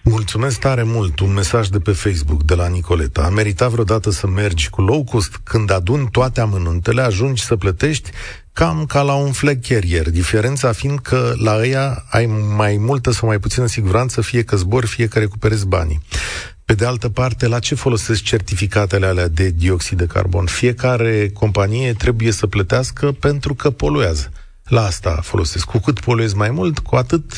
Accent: native